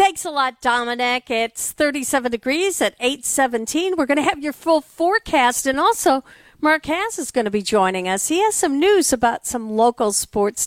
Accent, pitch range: American, 195-275 Hz